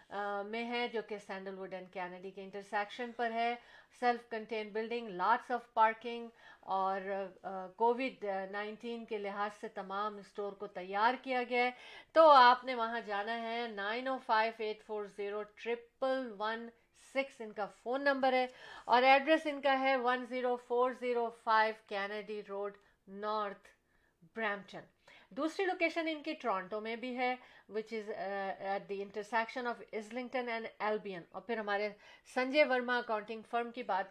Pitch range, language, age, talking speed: 200-240 Hz, Urdu, 50-69, 160 wpm